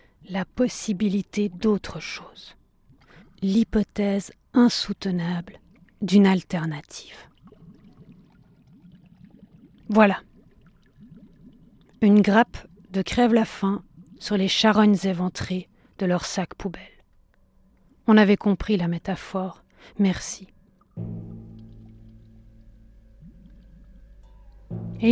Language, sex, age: French, female, 40-59